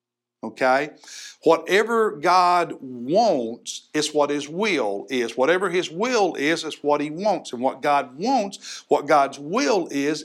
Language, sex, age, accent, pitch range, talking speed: English, male, 60-79, American, 145-225 Hz, 145 wpm